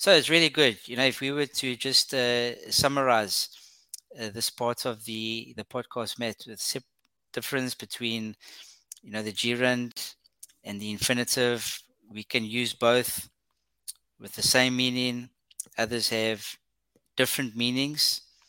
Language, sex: English, male